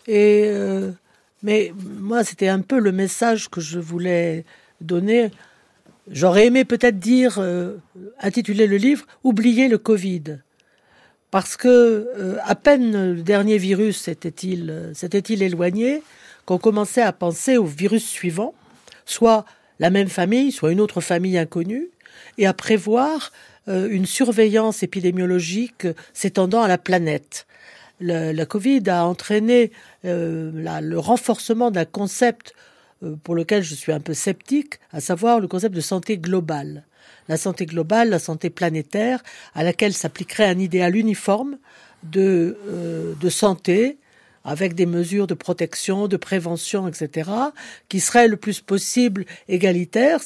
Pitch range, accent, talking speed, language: 175-225 Hz, French, 140 wpm, French